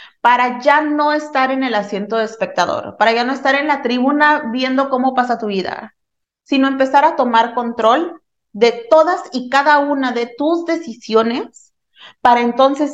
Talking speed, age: 165 wpm, 30-49